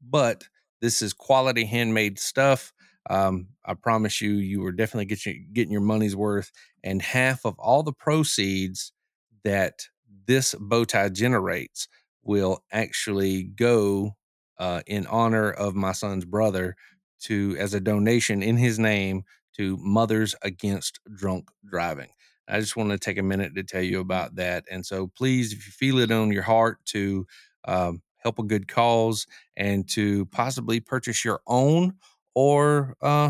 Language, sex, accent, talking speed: English, male, American, 155 wpm